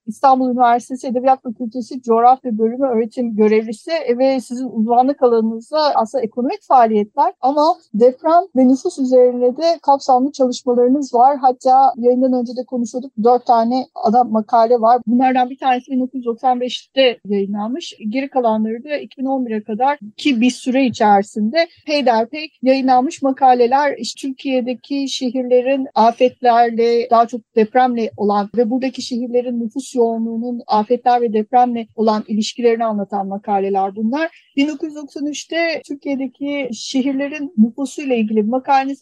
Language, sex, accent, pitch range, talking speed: Turkish, female, native, 230-275 Hz, 120 wpm